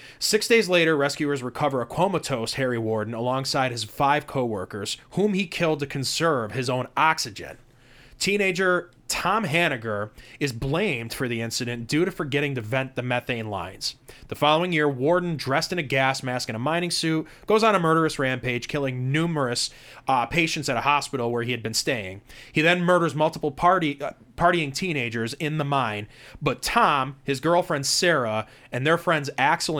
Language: English